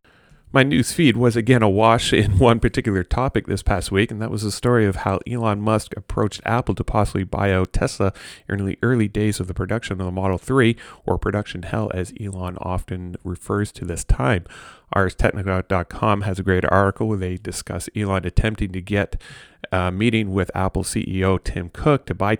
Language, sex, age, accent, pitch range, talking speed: English, male, 30-49, American, 95-110 Hz, 190 wpm